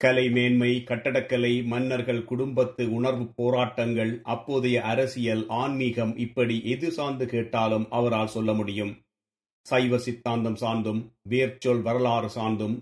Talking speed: 105 wpm